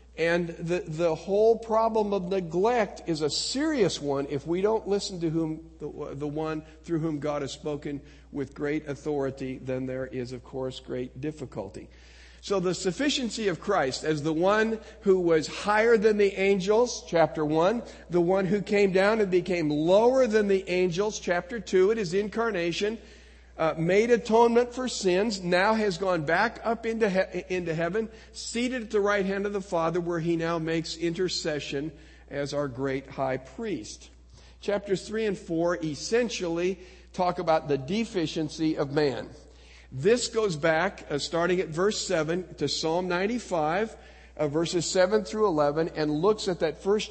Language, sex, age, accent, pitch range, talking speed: English, male, 50-69, American, 150-205 Hz, 165 wpm